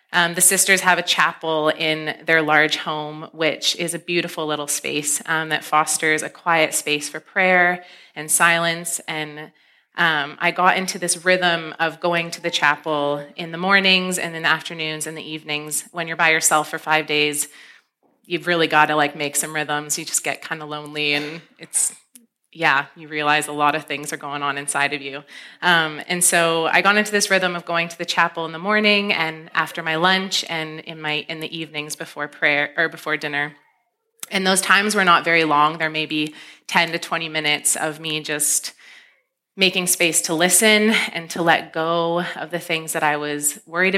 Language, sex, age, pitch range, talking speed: English, female, 30-49, 150-175 Hz, 200 wpm